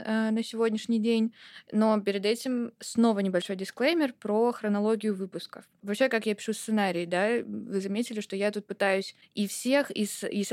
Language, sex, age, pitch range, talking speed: Russian, female, 20-39, 195-225 Hz, 160 wpm